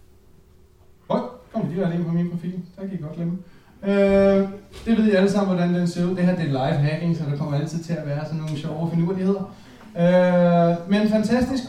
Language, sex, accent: Danish, male, native